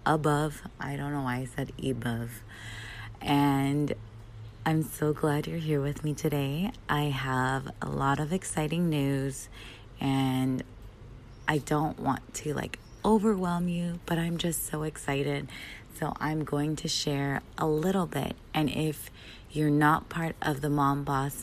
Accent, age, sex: American, 20-39, female